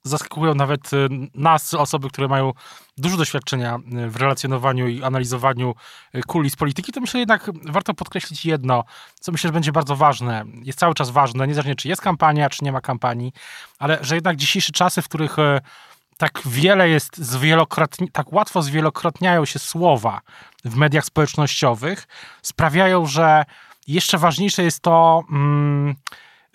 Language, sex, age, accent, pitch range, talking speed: Polish, male, 20-39, native, 140-170 Hz, 145 wpm